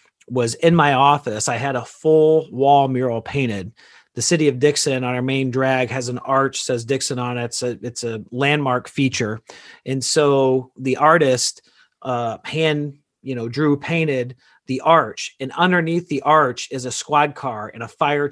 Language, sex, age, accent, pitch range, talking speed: English, male, 40-59, American, 125-155 Hz, 180 wpm